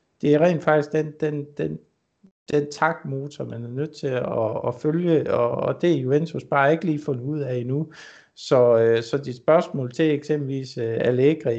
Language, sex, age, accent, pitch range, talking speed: Danish, male, 60-79, native, 125-150 Hz, 180 wpm